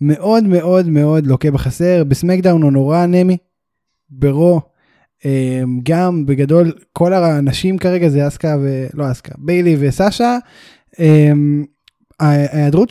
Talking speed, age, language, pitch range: 100 wpm, 10-29, Hebrew, 145-195 Hz